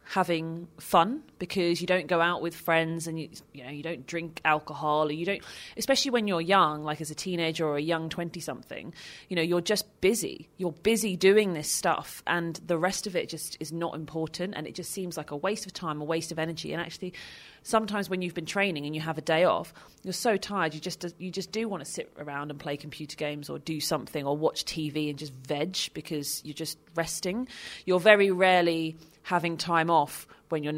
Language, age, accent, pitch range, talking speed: English, 30-49, British, 155-185 Hz, 225 wpm